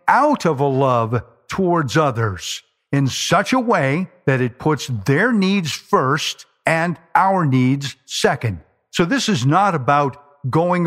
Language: English